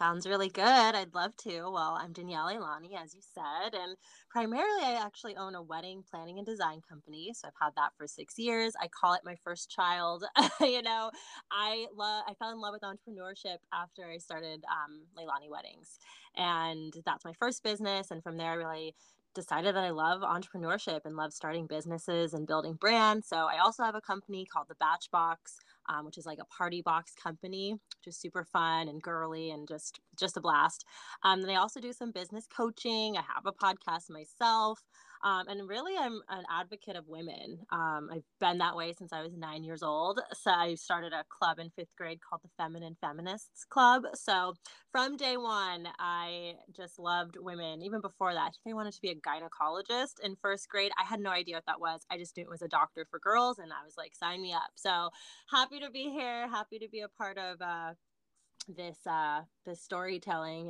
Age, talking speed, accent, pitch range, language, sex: 20-39, 205 wpm, American, 165-210 Hz, English, female